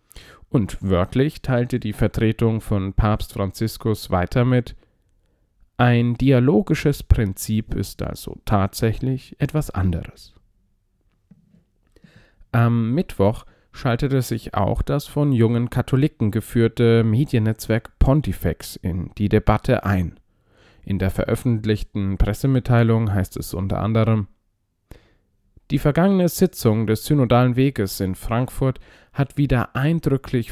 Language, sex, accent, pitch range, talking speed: German, male, German, 100-130 Hz, 105 wpm